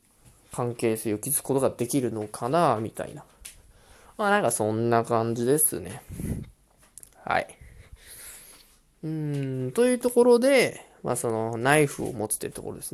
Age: 20-39